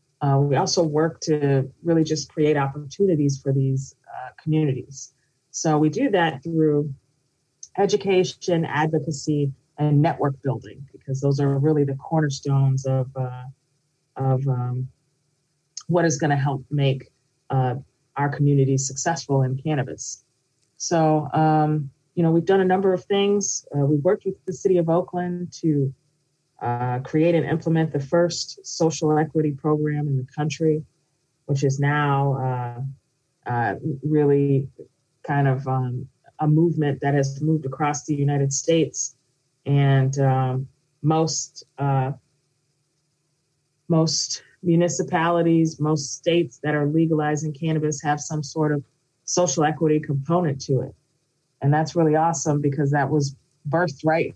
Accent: American